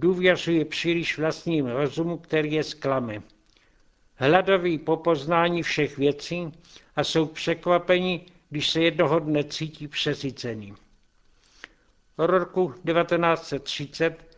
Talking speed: 95 wpm